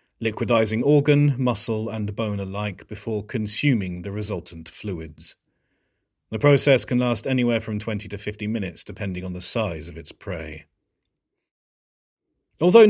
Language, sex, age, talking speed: English, male, 30-49, 135 wpm